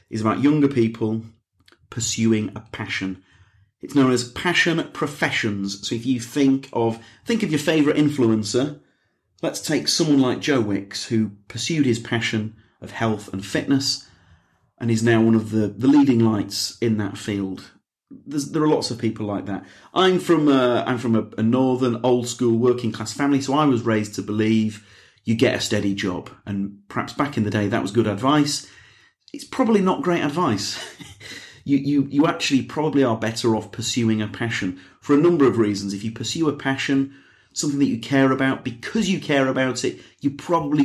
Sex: male